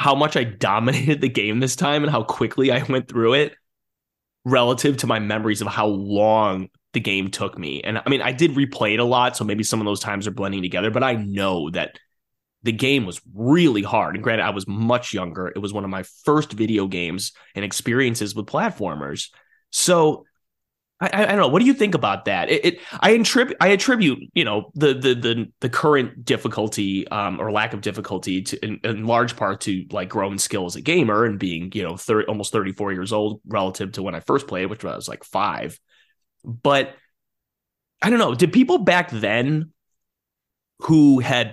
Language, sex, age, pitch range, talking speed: English, male, 20-39, 100-135 Hz, 205 wpm